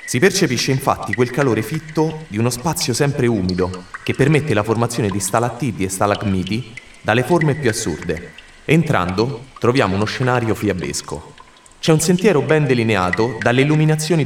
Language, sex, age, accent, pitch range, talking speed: Italian, male, 30-49, native, 105-155 Hz, 145 wpm